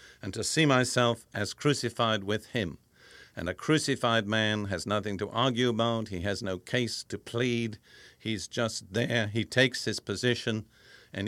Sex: male